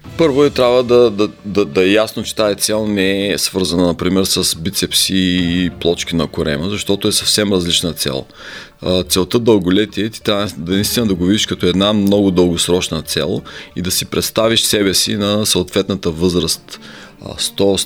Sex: male